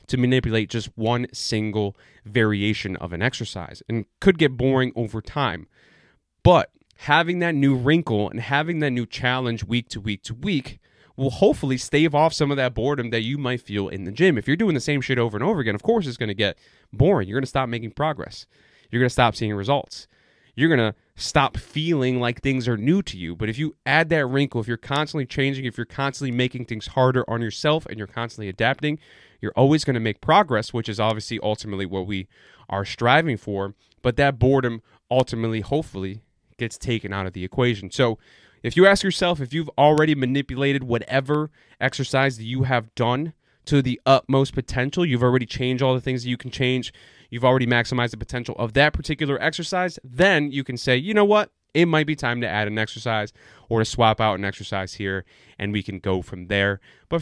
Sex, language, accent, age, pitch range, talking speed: male, English, American, 30-49, 110-140 Hz, 210 wpm